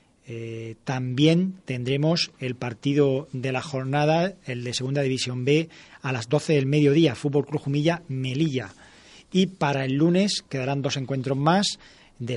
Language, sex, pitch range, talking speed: Spanish, male, 125-160 Hz, 145 wpm